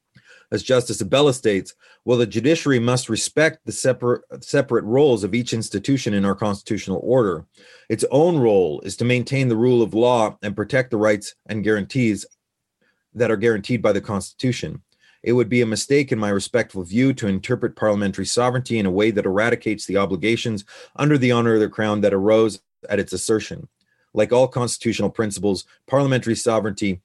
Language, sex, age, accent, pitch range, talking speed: French, male, 30-49, American, 100-125 Hz, 175 wpm